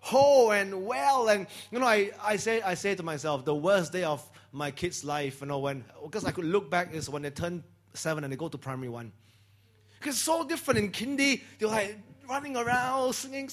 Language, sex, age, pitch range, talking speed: English, male, 30-49, 165-250 Hz, 220 wpm